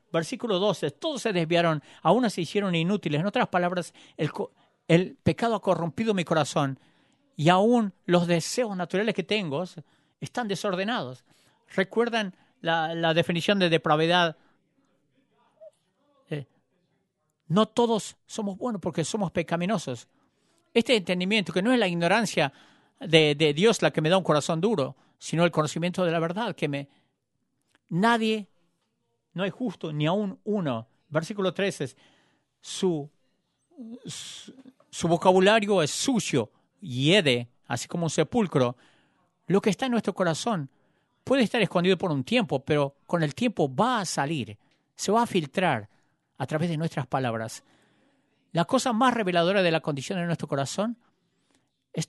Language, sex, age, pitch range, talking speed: English, male, 50-69, 155-210 Hz, 145 wpm